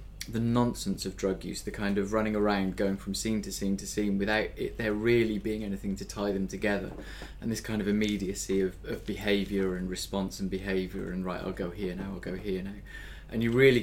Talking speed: 225 wpm